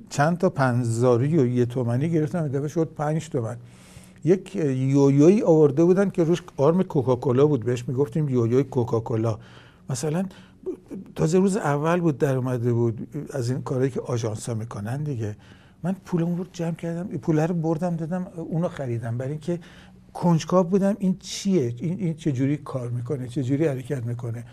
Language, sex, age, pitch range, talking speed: Persian, male, 60-79, 125-165 Hz, 160 wpm